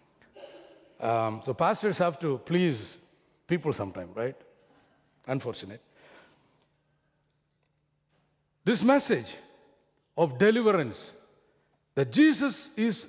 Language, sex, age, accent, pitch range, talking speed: English, male, 60-79, Indian, 130-175 Hz, 80 wpm